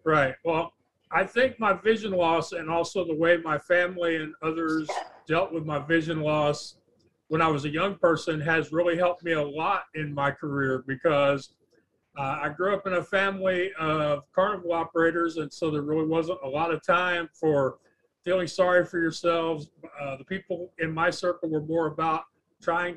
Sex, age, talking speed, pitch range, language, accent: male, 40-59, 185 wpm, 150-175 Hz, English, American